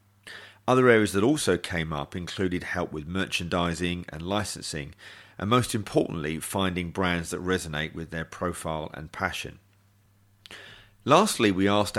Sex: male